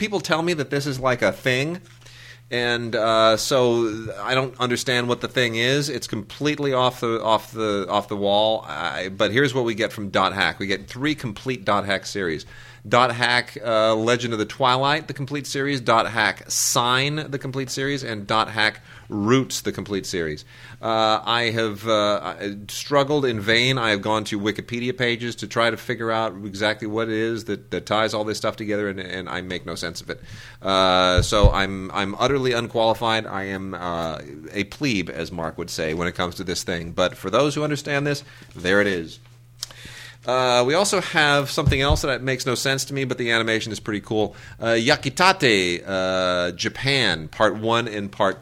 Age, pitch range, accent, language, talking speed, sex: 30-49, 105-130 Hz, American, English, 195 wpm, male